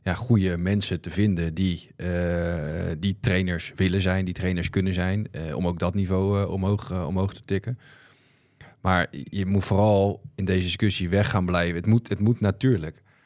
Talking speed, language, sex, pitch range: 185 wpm, Dutch, male, 90-100 Hz